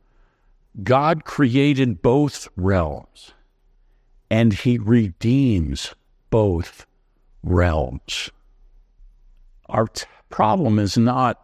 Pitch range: 105-145 Hz